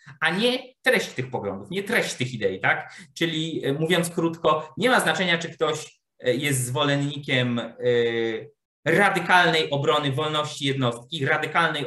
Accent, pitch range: native, 135-185 Hz